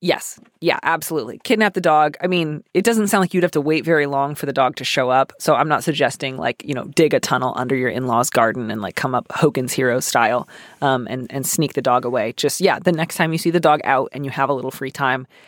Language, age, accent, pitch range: English, 30-49, American, 135-170 Hz